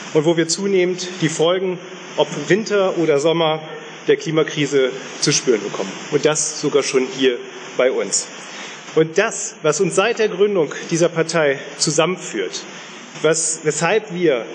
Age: 40-59